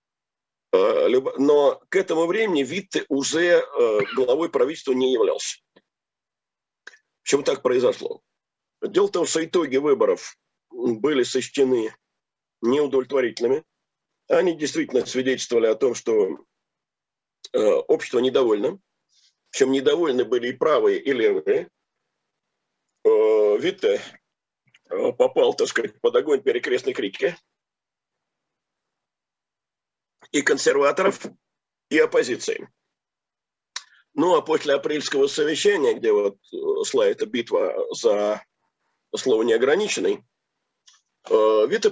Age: 50-69